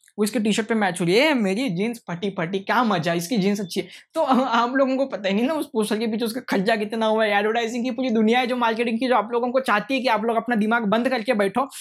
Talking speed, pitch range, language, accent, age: 285 wpm, 210-260 Hz, English, Indian, 20-39